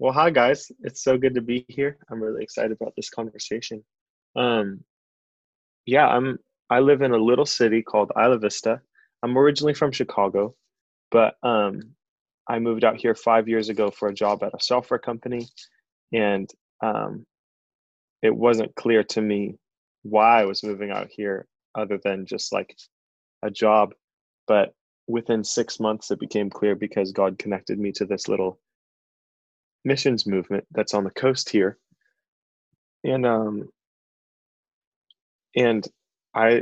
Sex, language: male, English